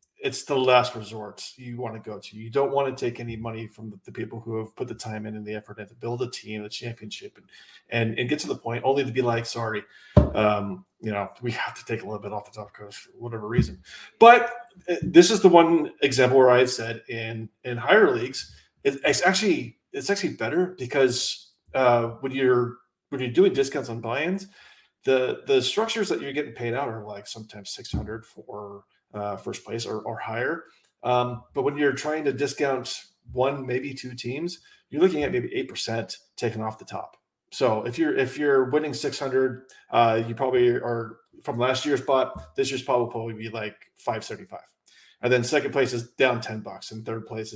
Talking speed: 210 wpm